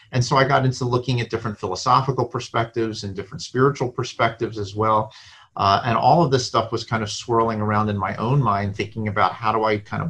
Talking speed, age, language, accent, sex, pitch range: 225 wpm, 40-59, English, American, male, 100-115 Hz